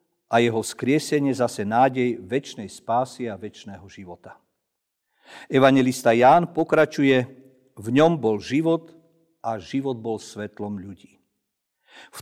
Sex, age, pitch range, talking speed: male, 50-69, 115-150 Hz, 115 wpm